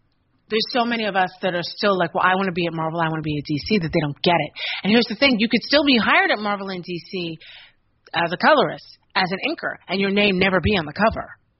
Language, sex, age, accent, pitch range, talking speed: English, female, 30-49, American, 180-240 Hz, 280 wpm